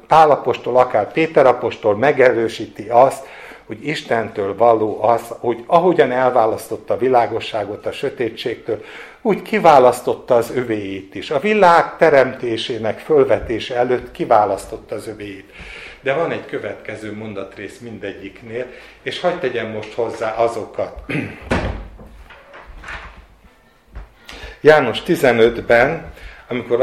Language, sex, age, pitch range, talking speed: Hungarian, male, 60-79, 110-165 Hz, 95 wpm